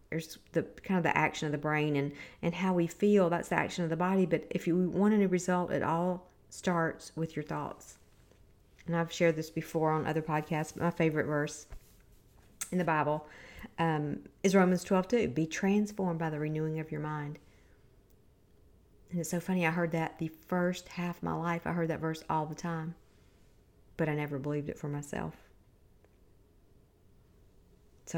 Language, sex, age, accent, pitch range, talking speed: English, female, 50-69, American, 150-175 Hz, 185 wpm